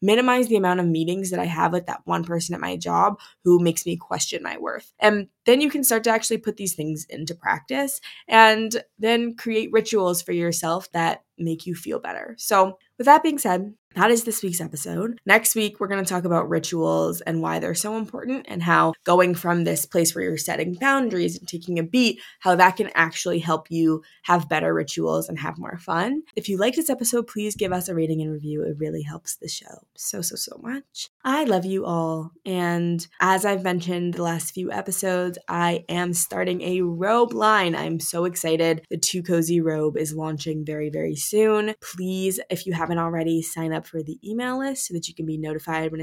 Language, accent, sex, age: English, American, female, 20-39